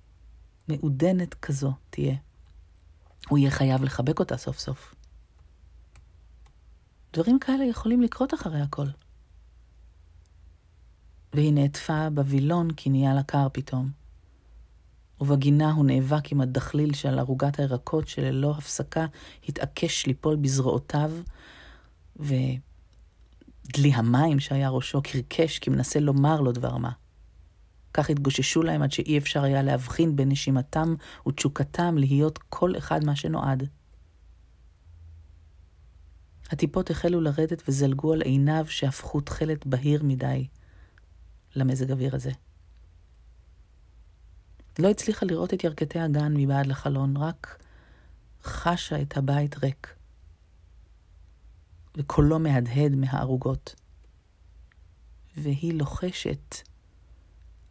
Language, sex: Hebrew, female